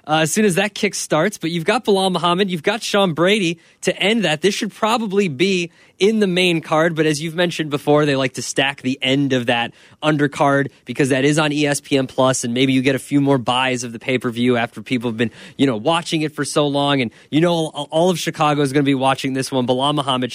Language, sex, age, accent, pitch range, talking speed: English, male, 20-39, American, 135-165 Hz, 250 wpm